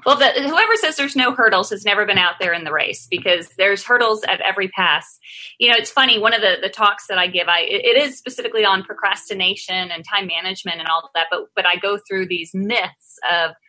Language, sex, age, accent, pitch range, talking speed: English, female, 20-39, American, 185-250 Hz, 235 wpm